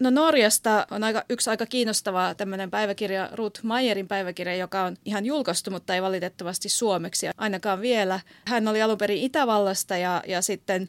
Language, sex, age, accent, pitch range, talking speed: Finnish, female, 30-49, native, 185-215 Hz, 160 wpm